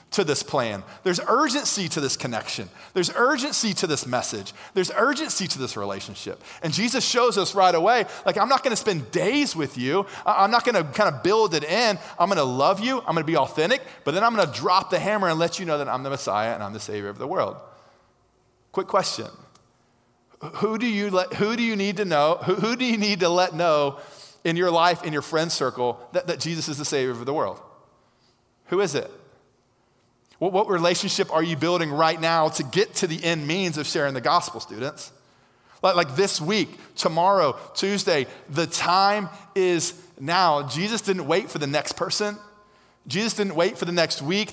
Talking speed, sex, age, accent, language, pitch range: 200 wpm, male, 30-49, American, English, 135-195 Hz